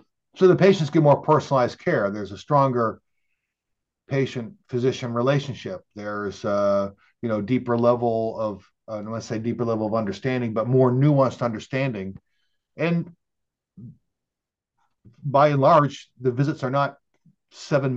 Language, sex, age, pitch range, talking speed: English, male, 50-69, 110-130 Hz, 130 wpm